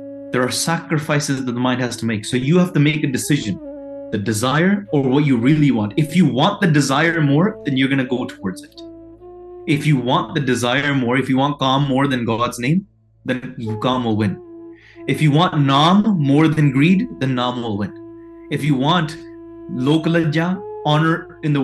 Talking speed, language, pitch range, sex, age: 200 wpm, English, 125-170 Hz, male, 20-39